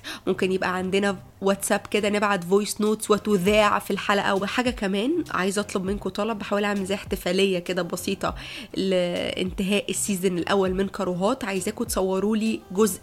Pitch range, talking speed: 190-215 Hz, 145 wpm